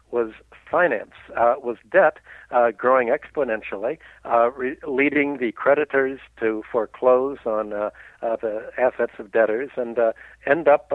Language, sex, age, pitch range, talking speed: English, male, 60-79, 120-155 Hz, 135 wpm